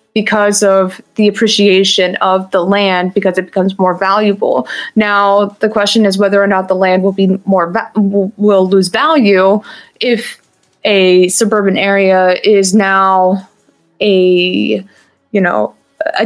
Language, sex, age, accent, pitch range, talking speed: English, female, 20-39, American, 190-215 Hz, 135 wpm